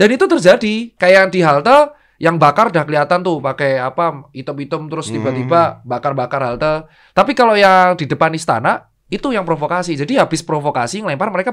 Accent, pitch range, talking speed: native, 140-200 Hz, 165 wpm